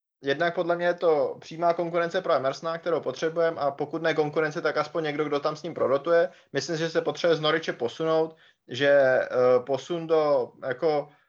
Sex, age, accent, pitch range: male, 20-39, native, 135-155 Hz